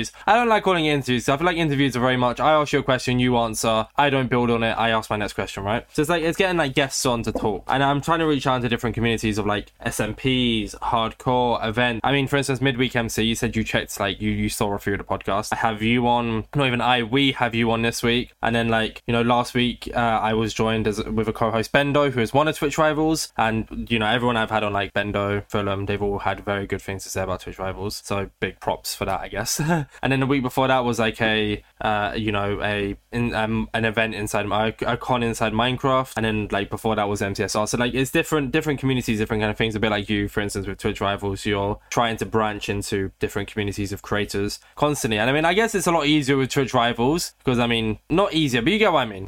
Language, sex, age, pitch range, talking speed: English, male, 10-29, 105-130 Hz, 265 wpm